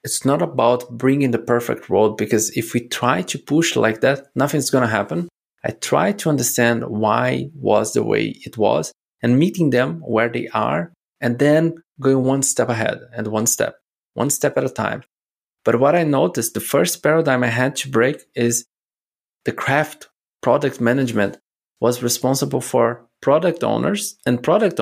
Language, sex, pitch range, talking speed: English, male, 120-145 Hz, 175 wpm